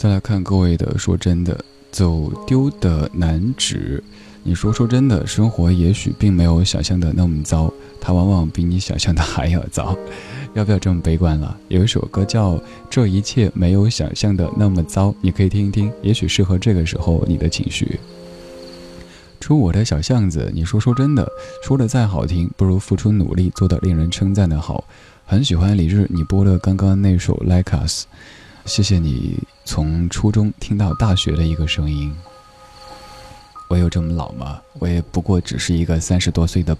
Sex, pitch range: male, 85-105 Hz